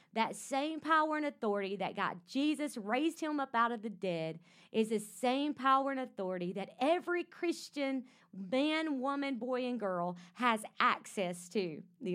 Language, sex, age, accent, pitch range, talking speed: English, female, 40-59, American, 195-245 Hz, 165 wpm